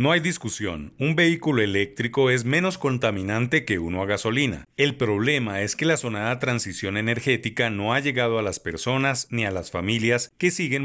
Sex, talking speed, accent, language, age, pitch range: male, 185 wpm, Mexican, Spanish, 40-59, 105-140 Hz